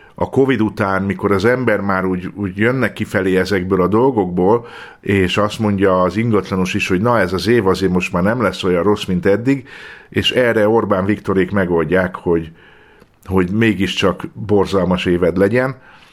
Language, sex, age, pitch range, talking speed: Hungarian, male, 50-69, 95-105 Hz, 165 wpm